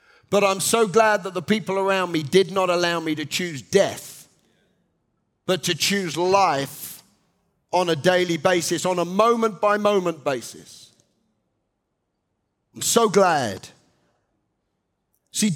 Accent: British